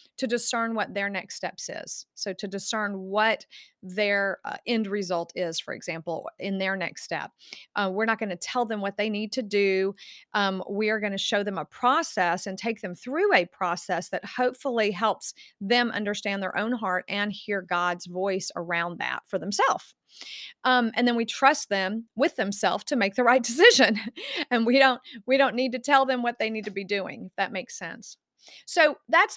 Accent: American